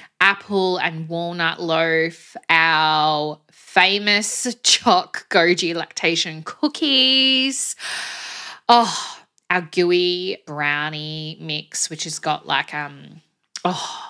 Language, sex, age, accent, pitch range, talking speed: English, female, 20-39, Australian, 165-240 Hz, 90 wpm